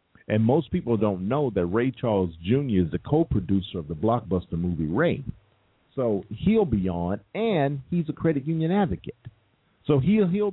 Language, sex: English, male